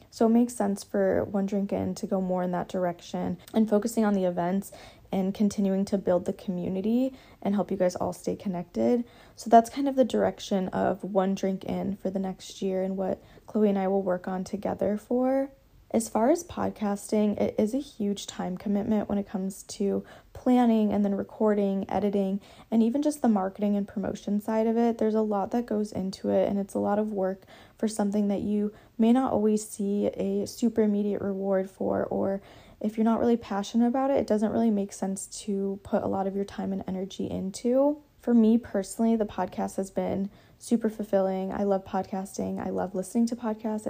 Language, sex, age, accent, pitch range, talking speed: English, female, 20-39, American, 190-220 Hz, 205 wpm